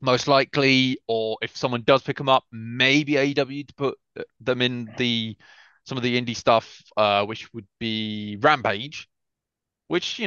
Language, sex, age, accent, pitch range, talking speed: English, male, 30-49, British, 105-130 Hz, 165 wpm